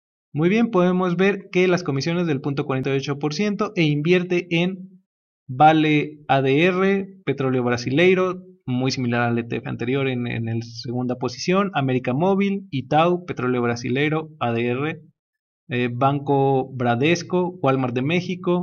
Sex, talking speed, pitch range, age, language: male, 120 wpm, 135-185 Hz, 30-49, Spanish